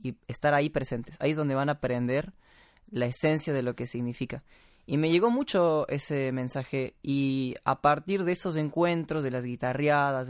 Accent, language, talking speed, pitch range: Mexican, Spanish, 180 wpm, 125-155 Hz